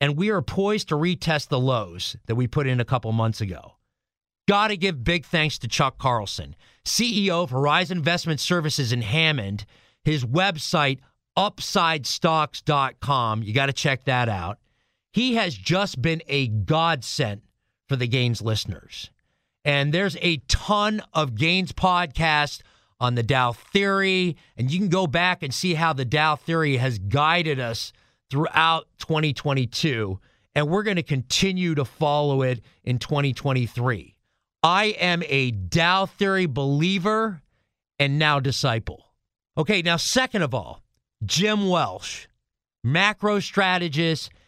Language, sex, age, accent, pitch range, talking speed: English, male, 40-59, American, 125-175 Hz, 140 wpm